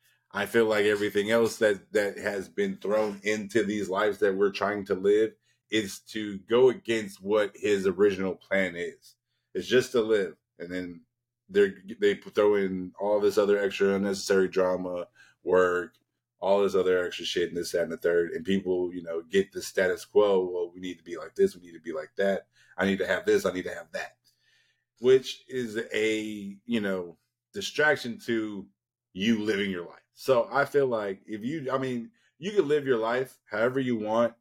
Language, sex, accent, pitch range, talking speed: English, male, American, 95-130 Hz, 195 wpm